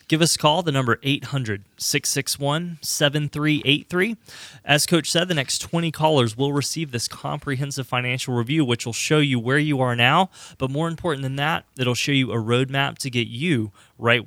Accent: American